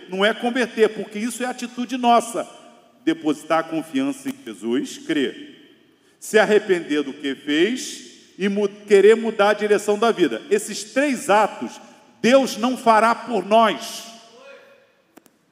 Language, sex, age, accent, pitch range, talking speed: Portuguese, male, 50-69, Brazilian, 215-280 Hz, 130 wpm